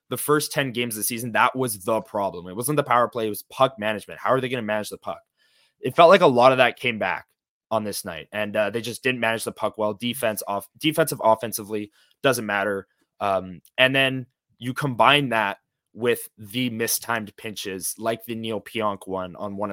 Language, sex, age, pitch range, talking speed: English, male, 20-39, 105-130 Hz, 220 wpm